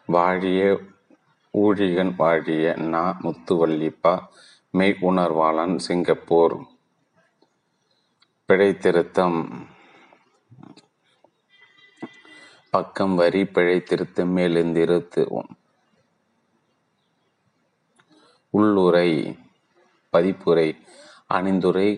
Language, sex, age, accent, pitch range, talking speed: Tamil, male, 30-49, native, 85-95 Hz, 45 wpm